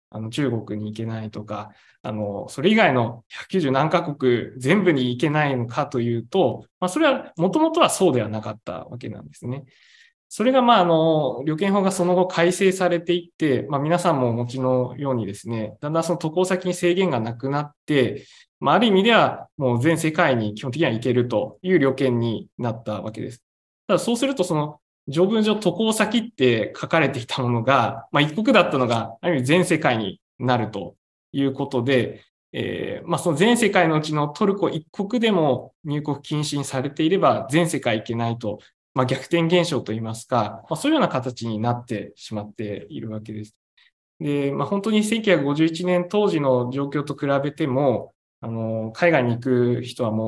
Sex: male